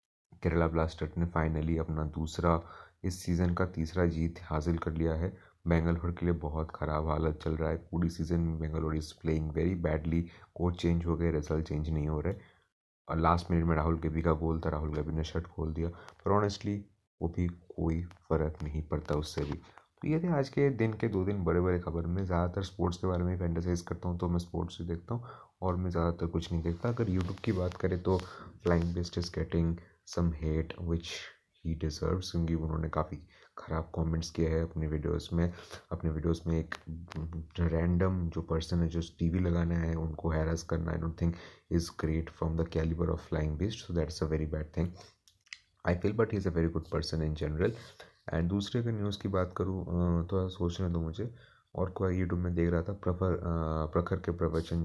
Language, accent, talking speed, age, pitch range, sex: Hindi, native, 205 wpm, 30-49, 80-90 Hz, male